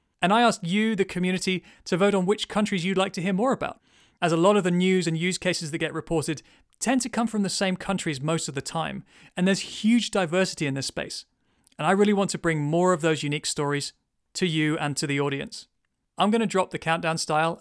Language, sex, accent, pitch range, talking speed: English, male, British, 150-190 Hz, 240 wpm